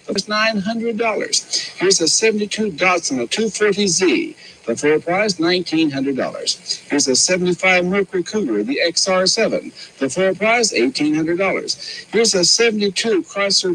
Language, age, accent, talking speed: English, 60-79, American, 110 wpm